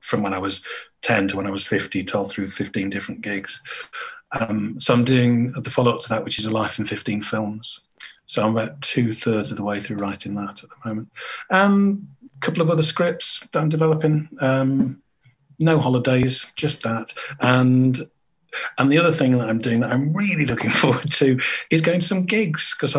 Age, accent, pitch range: 40-59, British, 110-150 Hz